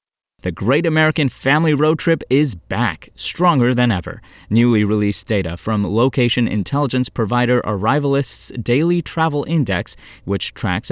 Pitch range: 105-145 Hz